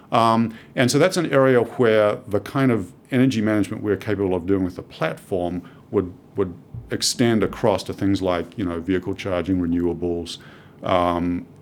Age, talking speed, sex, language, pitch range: 50-69, 165 wpm, male, English, 90-110 Hz